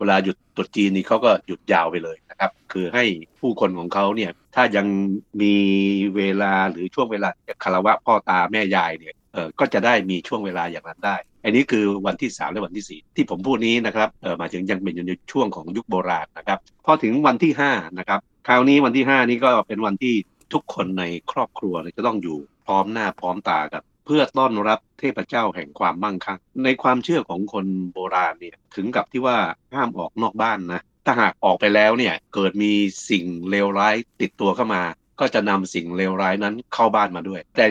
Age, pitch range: 60-79, 95-110 Hz